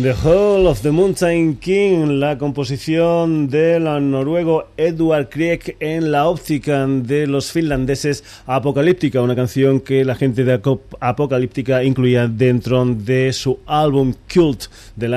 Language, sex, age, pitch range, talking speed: Spanish, male, 30-49, 125-150 Hz, 130 wpm